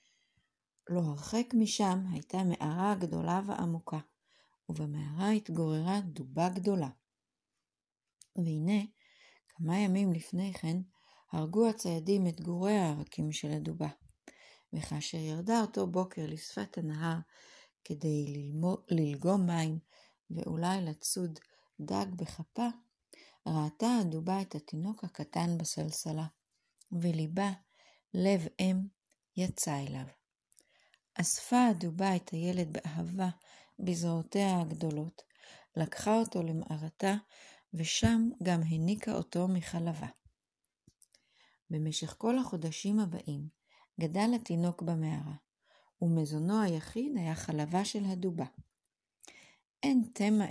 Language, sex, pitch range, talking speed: Hebrew, female, 155-195 Hz, 90 wpm